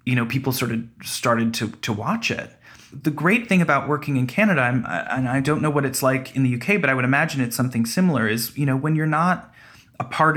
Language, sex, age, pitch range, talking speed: English, male, 30-49, 115-135 Hz, 250 wpm